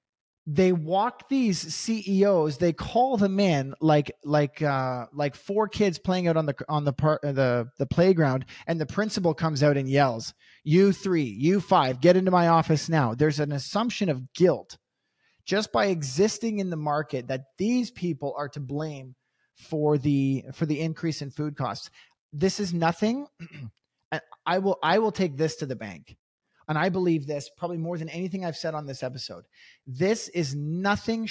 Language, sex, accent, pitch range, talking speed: English, male, American, 140-185 Hz, 180 wpm